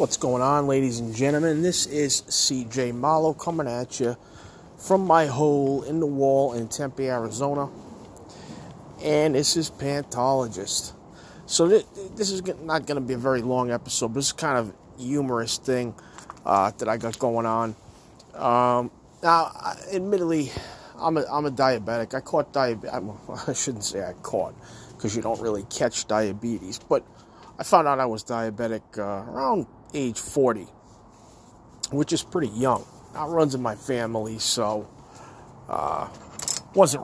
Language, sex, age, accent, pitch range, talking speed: English, male, 30-49, American, 120-150 Hz, 160 wpm